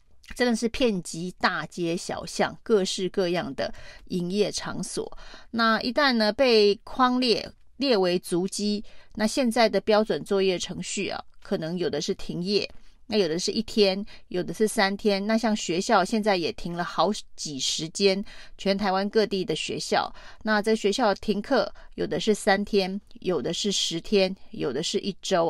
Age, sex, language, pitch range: 30-49, female, Chinese, 185-225 Hz